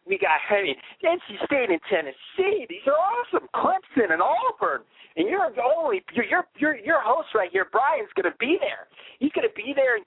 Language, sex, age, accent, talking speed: English, male, 40-59, American, 205 wpm